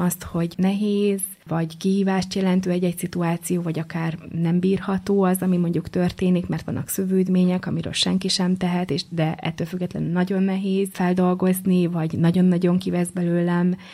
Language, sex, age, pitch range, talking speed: Hungarian, female, 20-39, 170-185 Hz, 145 wpm